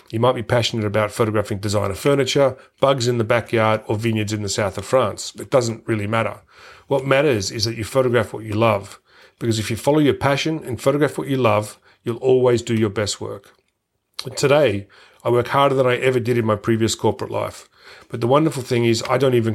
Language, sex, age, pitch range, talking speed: English, male, 40-59, 110-125 Hz, 215 wpm